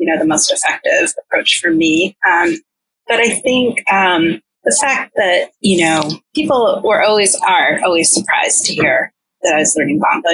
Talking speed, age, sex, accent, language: 180 wpm, 30-49, female, American, English